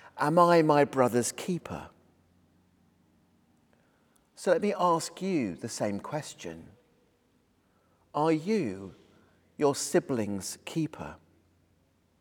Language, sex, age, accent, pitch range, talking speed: English, male, 40-59, British, 95-160 Hz, 90 wpm